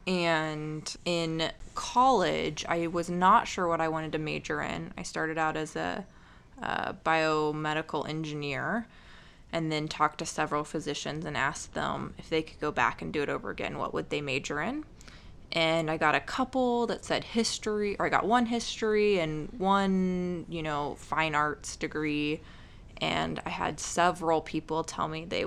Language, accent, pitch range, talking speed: English, American, 155-180 Hz, 170 wpm